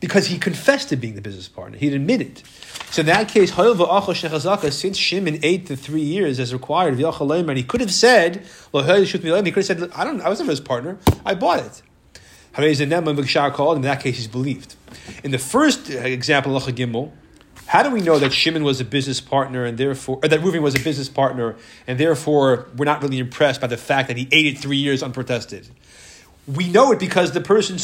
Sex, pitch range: male, 135-185 Hz